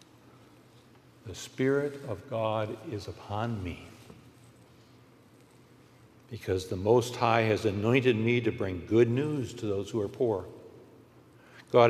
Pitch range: 105-130 Hz